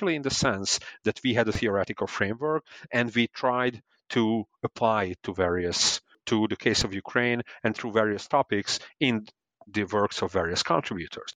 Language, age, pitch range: English, 40-59, 100-125 Hz